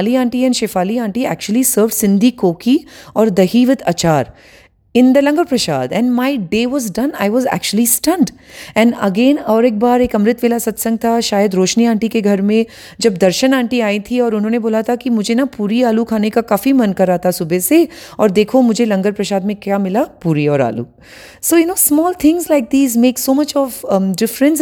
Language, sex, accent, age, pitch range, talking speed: Hindi, female, native, 30-49, 200-255 Hz, 205 wpm